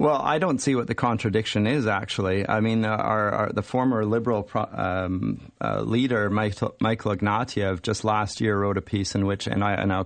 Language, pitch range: English, 105-125 Hz